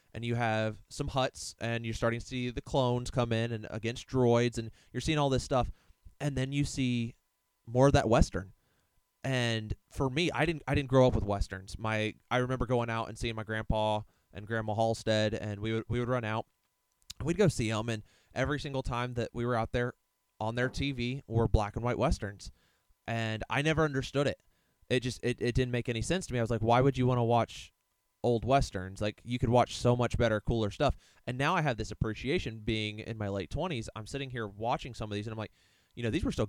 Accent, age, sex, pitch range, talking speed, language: American, 20-39, male, 110-125 Hz, 235 wpm, English